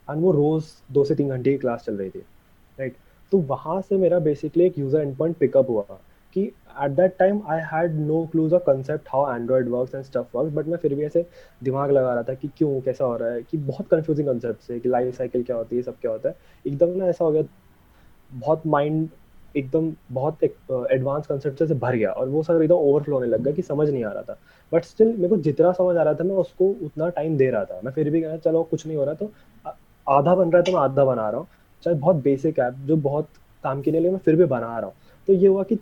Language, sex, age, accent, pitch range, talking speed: Hindi, male, 20-39, native, 135-175 Hz, 165 wpm